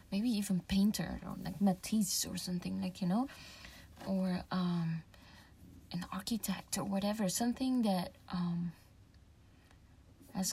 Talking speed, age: 120 wpm, 20-39